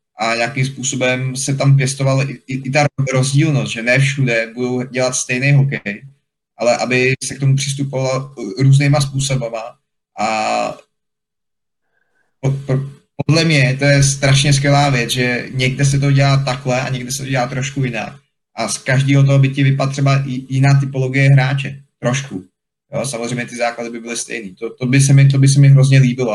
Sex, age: male, 20-39